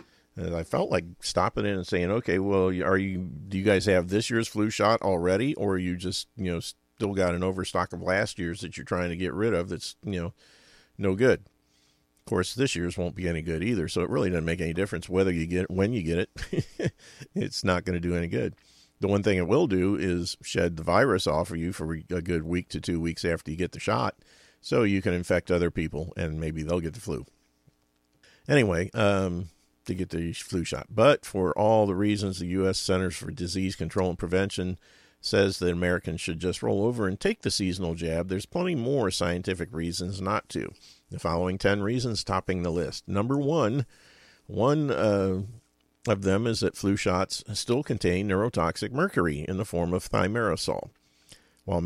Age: 40-59